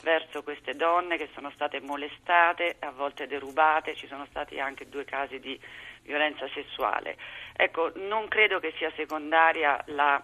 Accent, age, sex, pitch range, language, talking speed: native, 40-59, female, 145-170 Hz, Italian, 150 wpm